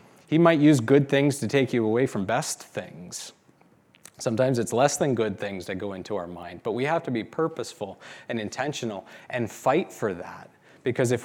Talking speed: 195 wpm